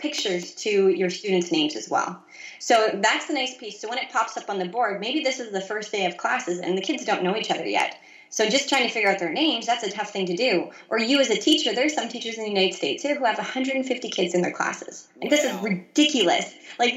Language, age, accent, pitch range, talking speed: English, 20-39, American, 190-275 Hz, 265 wpm